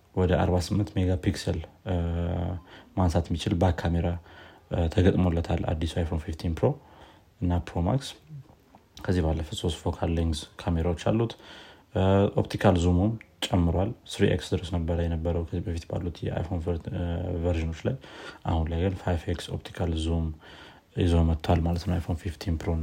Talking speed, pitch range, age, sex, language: 110 wpm, 85-100 Hz, 30-49, male, Amharic